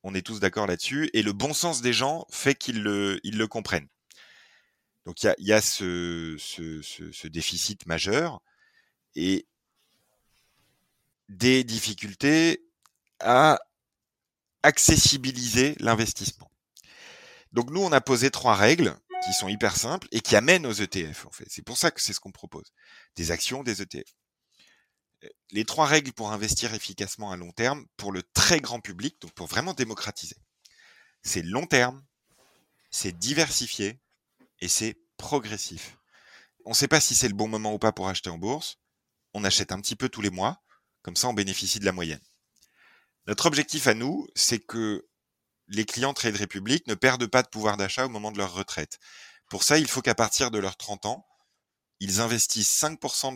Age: 30-49